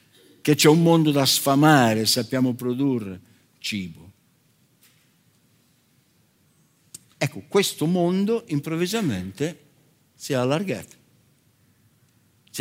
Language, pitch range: Italian, 105-145 Hz